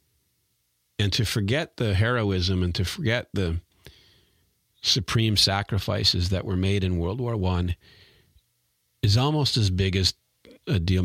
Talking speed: 135 wpm